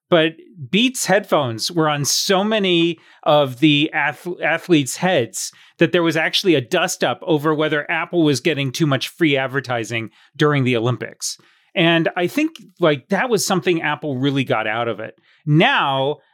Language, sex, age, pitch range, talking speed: English, male, 30-49, 135-175 Hz, 165 wpm